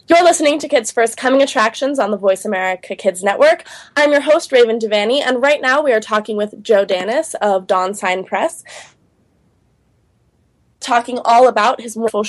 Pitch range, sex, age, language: 205-265 Hz, female, 20-39, English